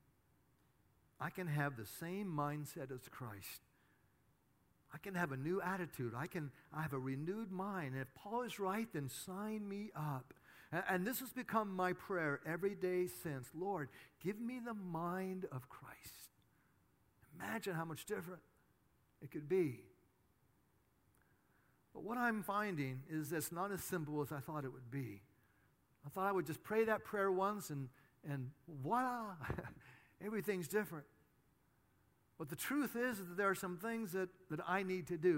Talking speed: 170 wpm